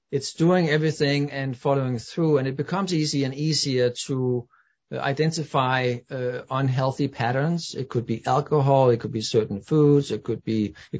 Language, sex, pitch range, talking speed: English, male, 125-145 Hz, 165 wpm